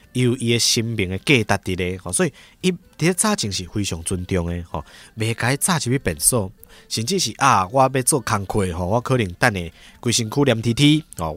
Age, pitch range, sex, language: 20-39, 100-150 Hz, male, Chinese